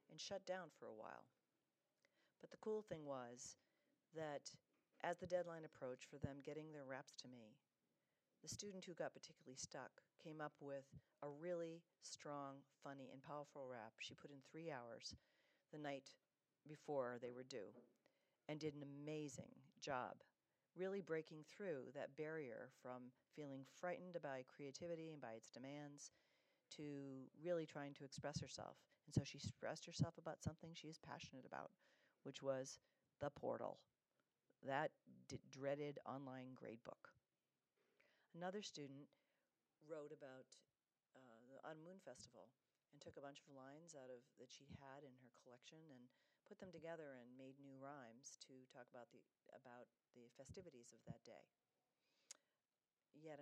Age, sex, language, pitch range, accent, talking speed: 40-59, female, English, 135-160 Hz, American, 155 wpm